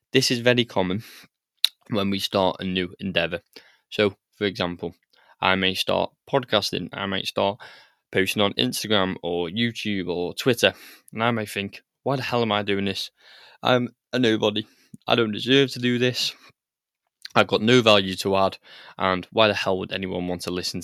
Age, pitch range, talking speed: 20-39, 95-110 Hz, 180 wpm